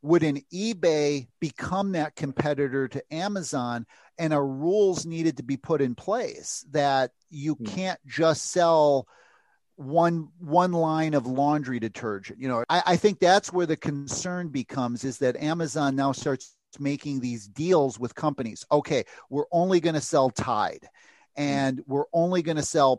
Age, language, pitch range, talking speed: 40-59, English, 135-170 Hz, 160 wpm